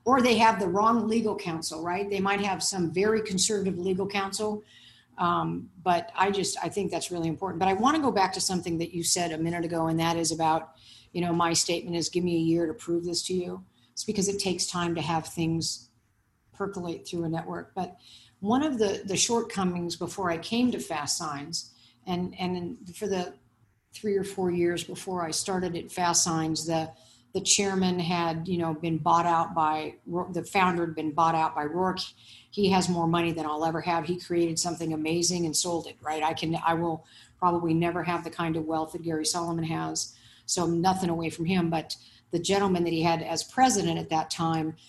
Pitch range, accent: 160-185 Hz, American